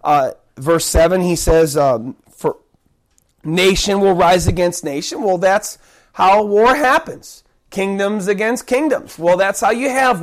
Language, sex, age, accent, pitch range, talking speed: English, male, 30-49, American, 175-235 Hz, 145 wpm